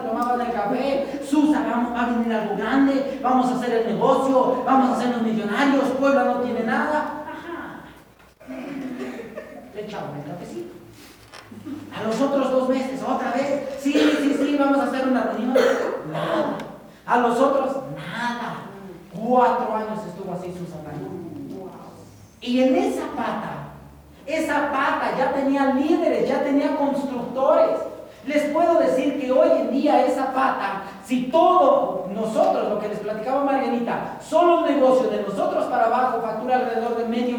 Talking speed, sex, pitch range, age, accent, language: 145 wpm, male, 220-275 Hz, 40-59, Mexican, Spanish